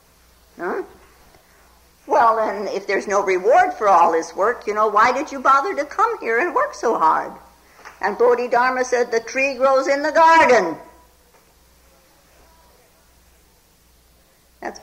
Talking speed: 135 wpm